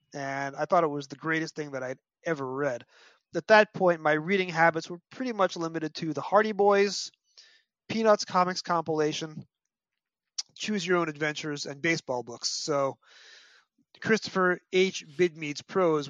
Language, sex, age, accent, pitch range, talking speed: English, male, 30-49, American, 145-185 Hz, 155 wpm